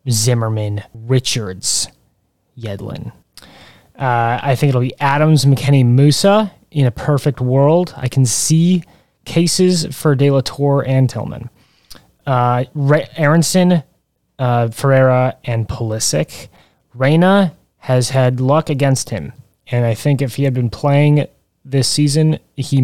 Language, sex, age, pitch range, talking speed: English, male, 20-39, 125-150 Hz, 125 wpm